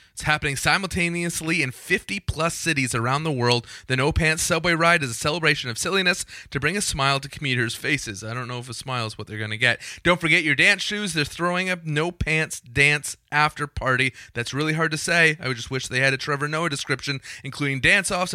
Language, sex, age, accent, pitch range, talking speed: English, male, 30-49, American, 120-155 Hz, 220 wpm